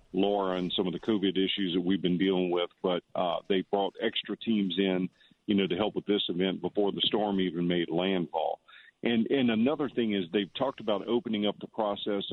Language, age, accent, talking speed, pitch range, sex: English, 50-69, American, 215 wpm, 95-105 Hz, male